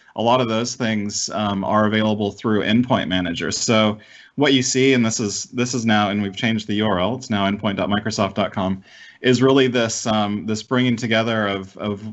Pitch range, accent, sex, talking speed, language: 105-120 Hz, American, male, 190 wpm, English